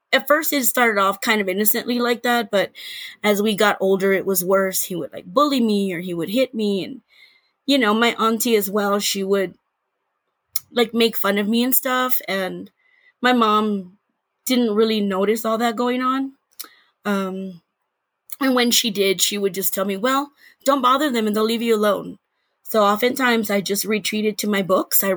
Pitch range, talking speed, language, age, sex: 200-245 Hz, 195 wpm, English, 20-39, female